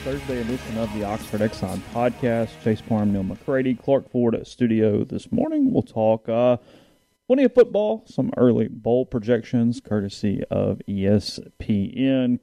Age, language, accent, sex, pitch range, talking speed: 30-49, English, American, male, 100-120 Hz, 150 wpm